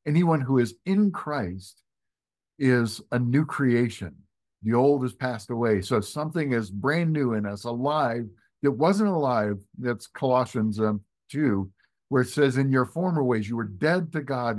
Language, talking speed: English, 170 wpm